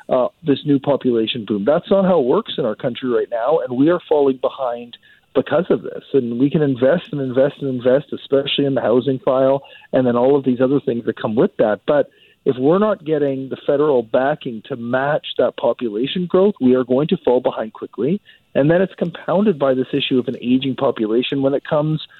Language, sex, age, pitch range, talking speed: English, male, 40-59, 120-145 Hz, 220 wpm